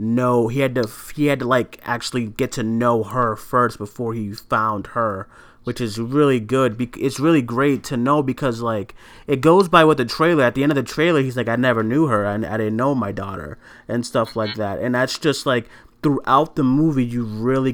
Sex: male